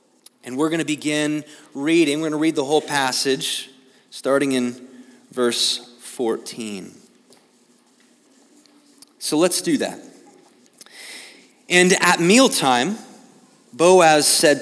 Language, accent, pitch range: English, American, 145-210 Hz